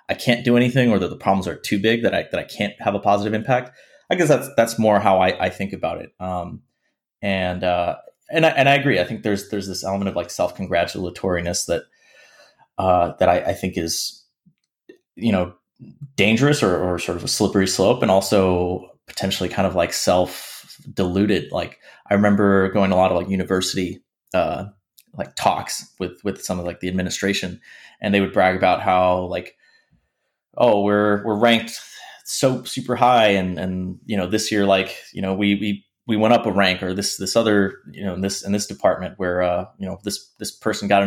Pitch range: 90-110 Hz